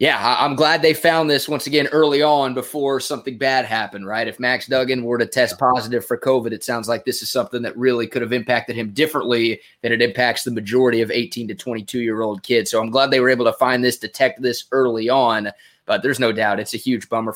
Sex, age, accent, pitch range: male, 20-39, American, 115-135 Hz